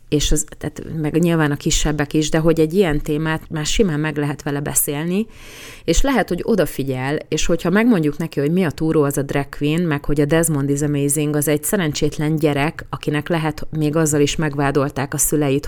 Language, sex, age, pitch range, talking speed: Hungarian, female, 30-49, 145-165 Hz, 205 wpm